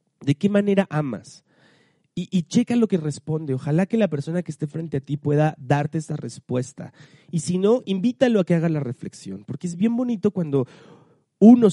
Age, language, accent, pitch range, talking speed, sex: 30-49, Spanish, Mexican, 135-175 Hz, 195 wpm, male